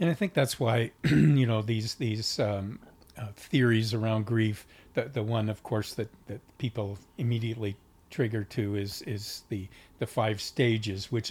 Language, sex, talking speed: English, male, 170 wpm